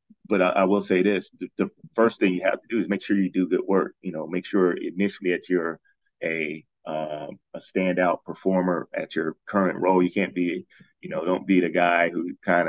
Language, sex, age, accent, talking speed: English, male, 30-49, American, 225 wpm